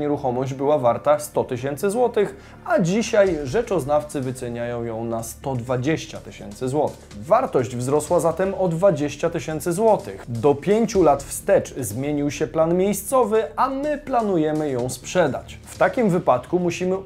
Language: Polish